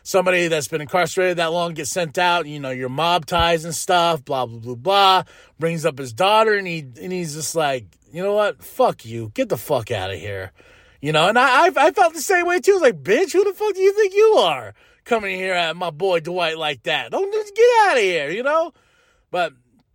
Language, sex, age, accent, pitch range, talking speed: English, male, 30-49, American, 150-220 Hz, 245 wpm